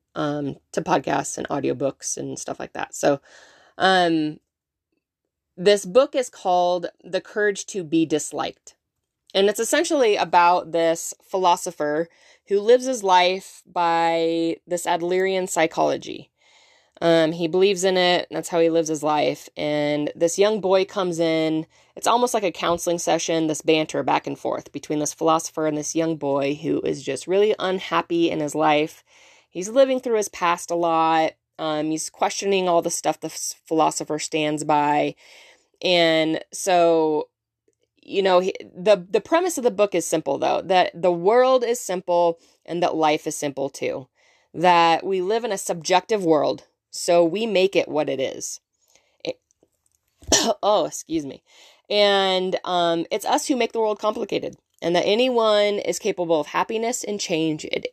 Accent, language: American, English